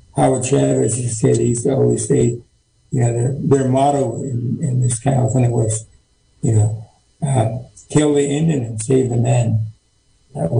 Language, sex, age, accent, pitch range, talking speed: English, male, 60-79, American, 120-140 Hz, 185 wpm